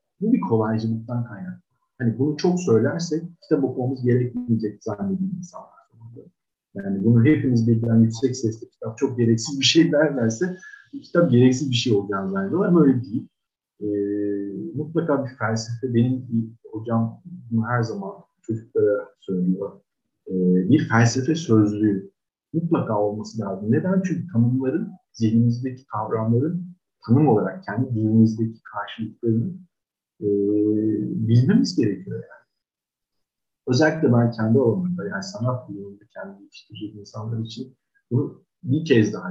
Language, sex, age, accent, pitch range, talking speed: Turkish, male, 50-69, native, 110-160 Hz, 125 wpm